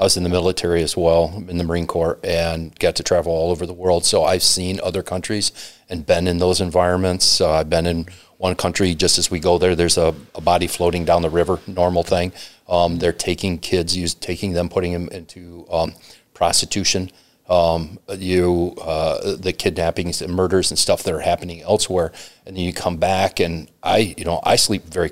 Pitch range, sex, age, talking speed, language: 85-95 Hz, male, 40-59, 205 wpm, English